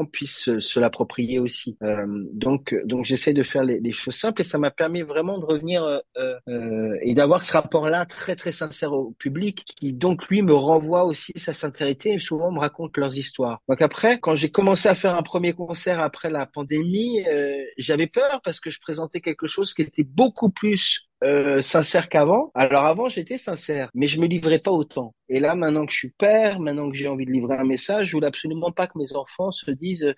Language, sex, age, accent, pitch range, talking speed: French, male, 40-59, French, 120-165 Hz, 220 wpm